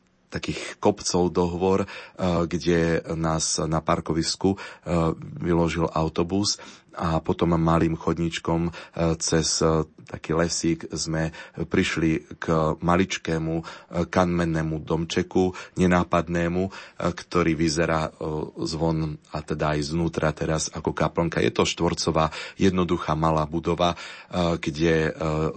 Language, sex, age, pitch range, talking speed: Slovak, male, 30-49, 80-90 Hz, 95 wpm